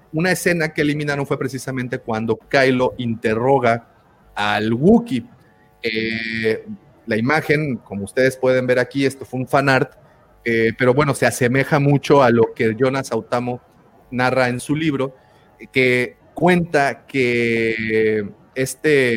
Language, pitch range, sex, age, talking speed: Spanish, 115-145 Hz, male, 30-49, 135 wpm